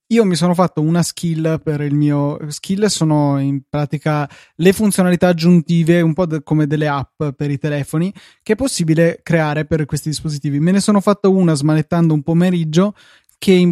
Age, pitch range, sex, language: 20-39, 150-170 Hz, male, Italian